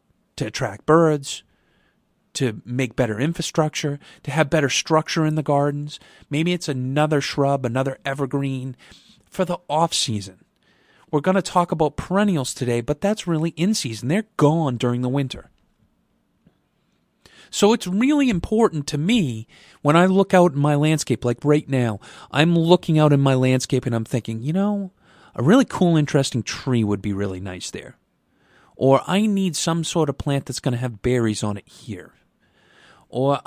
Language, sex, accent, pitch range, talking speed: English, male, American, 125-170 Hz, 170 wpm